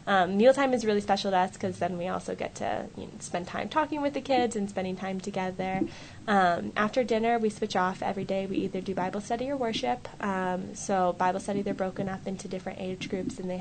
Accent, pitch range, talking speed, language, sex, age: American, 180-205 Hz, 230 wpm, English, female, 10-29